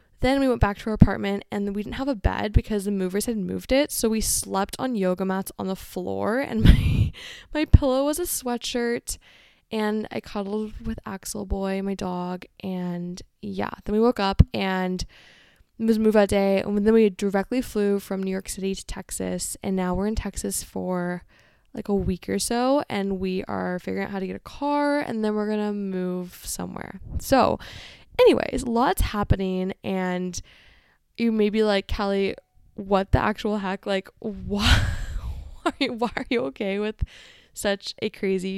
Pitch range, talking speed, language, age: 190-220 Hz, 190 wpm, English, 10-29